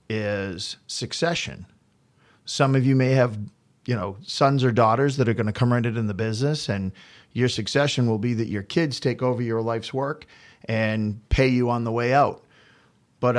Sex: male